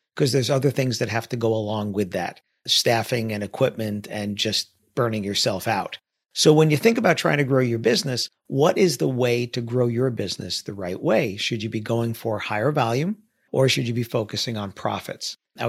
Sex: male